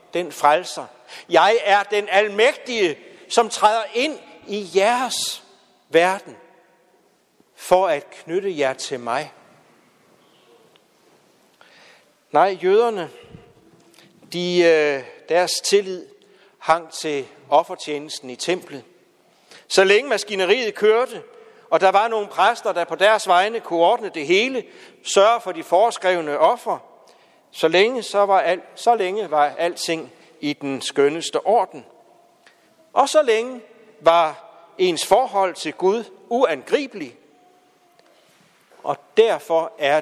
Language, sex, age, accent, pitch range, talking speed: Danish, male, 60-79, native, 165-250 Hz, 110 wpm